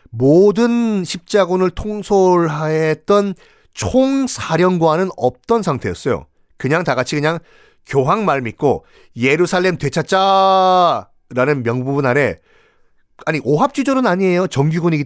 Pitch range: 125-190 Hz